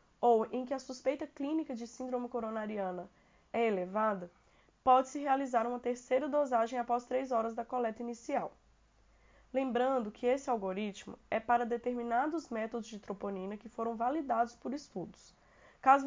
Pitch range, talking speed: 230-270 Hz, 140 wpm